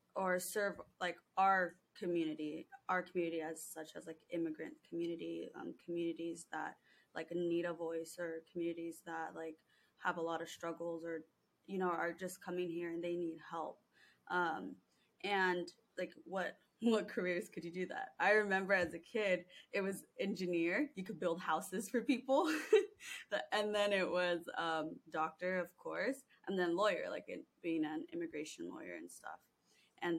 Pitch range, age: 170-195 Hz, 20-39